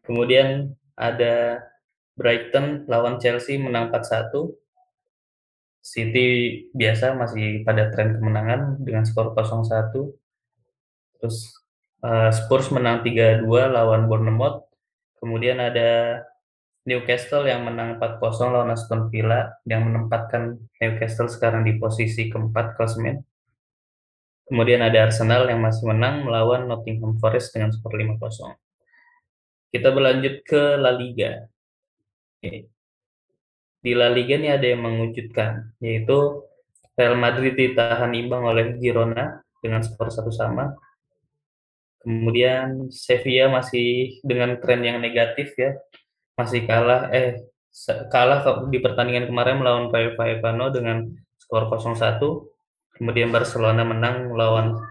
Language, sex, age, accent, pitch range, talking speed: Indonesian, male, 10-29, native, 115-130 Hz, 110 wpm